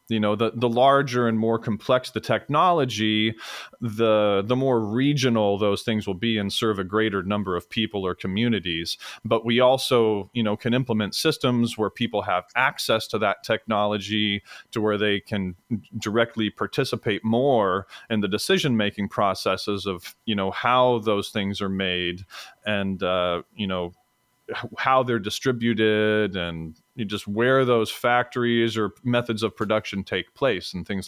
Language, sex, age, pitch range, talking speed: English, male, 30-49, 105-125 Hz, 160 wpm